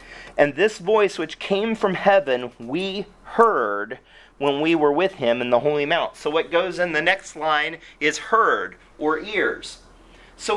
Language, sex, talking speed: English, male, 170 wpm